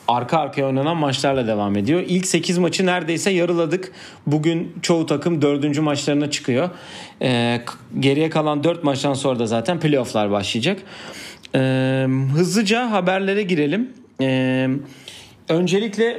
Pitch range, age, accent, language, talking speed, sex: 130-170 Hz, 40-59, native, Turkish, 120 wpm, male